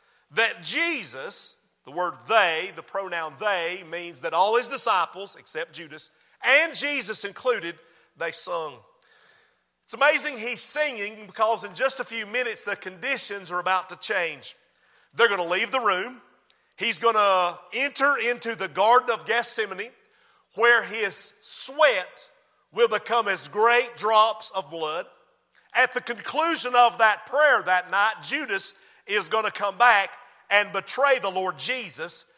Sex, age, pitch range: male, 40-59, 195-265 Hz